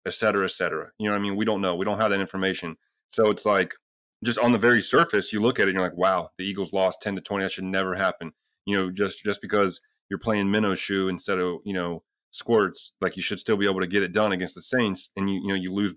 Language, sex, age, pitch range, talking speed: English, male, 30-49, 95-120 Hz, 285 wpm